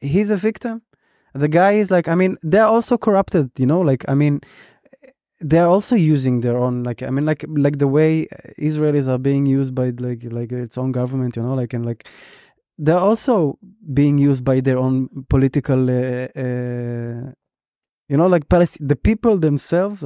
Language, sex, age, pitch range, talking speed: English, male, 20-39, 135-170 Hz, 180 wpm